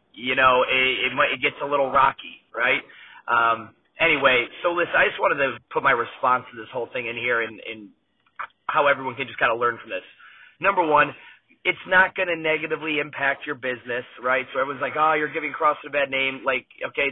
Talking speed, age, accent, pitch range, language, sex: 215 wpm, 30-49, American, 130-165 Hz, English, male